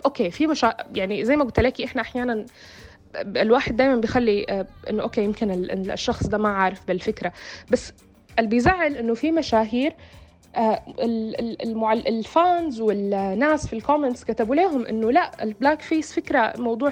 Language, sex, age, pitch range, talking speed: Arabic, female, 20-39, 210-270 Hz, 150 wpm